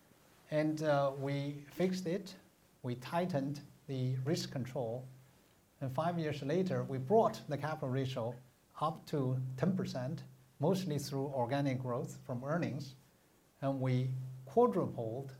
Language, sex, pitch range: English, male, 125-150 Hz